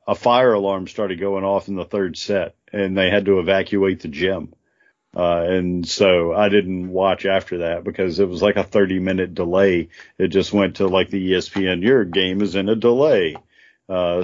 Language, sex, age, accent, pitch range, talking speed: English, male, 40-59, American, 95-115 Hz, 200 wpm